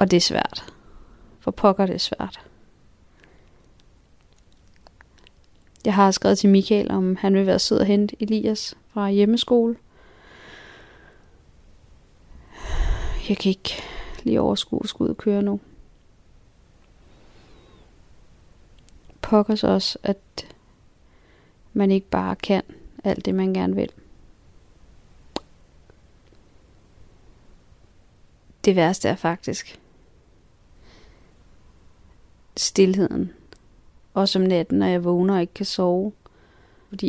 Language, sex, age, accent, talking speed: Danish, female, 30-49, native, 100 wpm